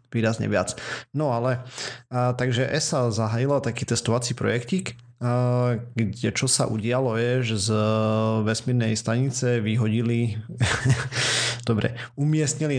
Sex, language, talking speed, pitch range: male, Slovak, 110 wpm, 110-125 Hz